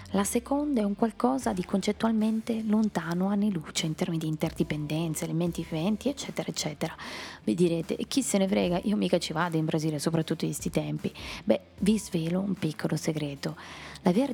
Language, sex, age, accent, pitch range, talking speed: Italian, female, 20-39, native, 160-210 Hz, 175 wpm